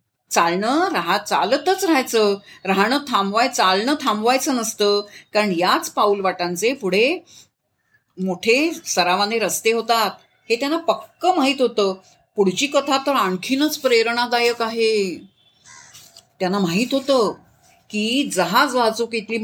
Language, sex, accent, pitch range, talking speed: Marathi, female, native, 190-265 Hz, 110 wpm